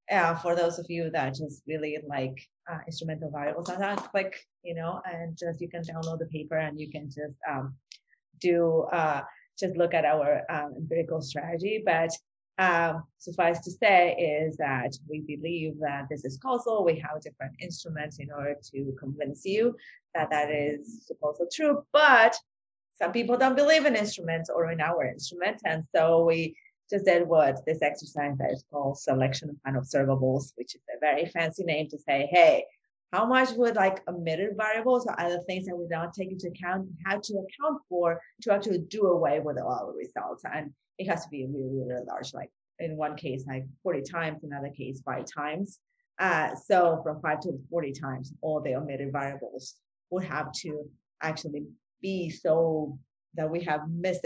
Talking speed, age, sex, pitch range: 185 wpm, 30-49, female, 145-180 Hz